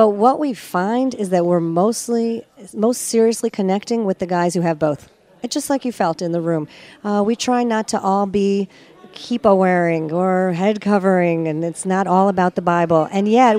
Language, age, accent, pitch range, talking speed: English, 40-59, American, 180-225 Hz, 205 wpm